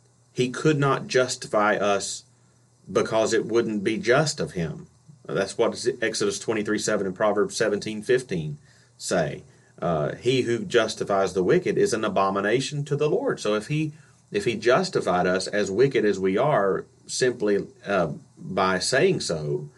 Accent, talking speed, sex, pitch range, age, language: American, 160 wpm, male, 95-130 Hz, 30-49, English